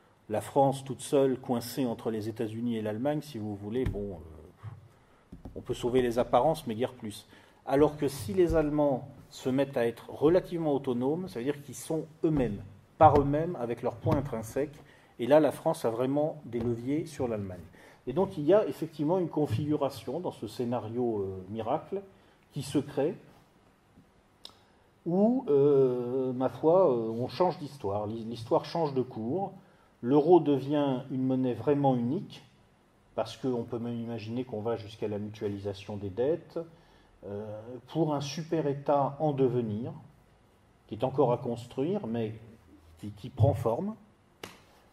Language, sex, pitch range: French, male, 115-145 Hz